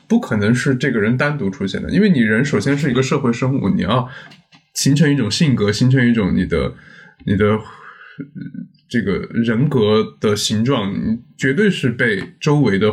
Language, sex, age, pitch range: Chinese, male, 20-39, 100-140 Hz